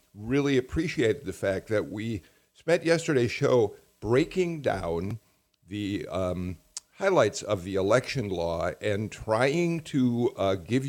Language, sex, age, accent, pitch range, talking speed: English, male, 50-69, American, 95-130 Hz, 125 wpm